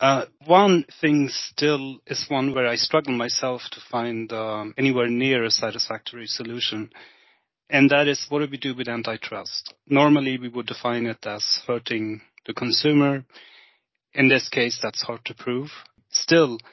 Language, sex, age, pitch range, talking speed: English, male, 30-49, 115-130 Hz, 160 wpm